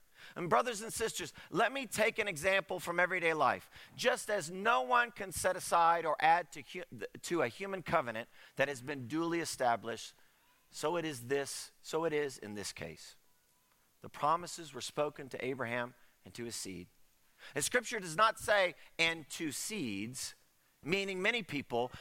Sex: male